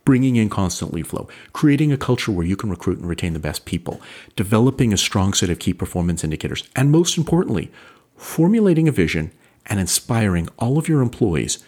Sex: male